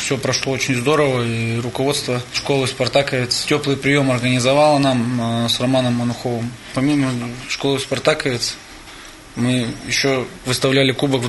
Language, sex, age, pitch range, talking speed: Russian, male, 20-39, 125-140 Hz, 115 wpm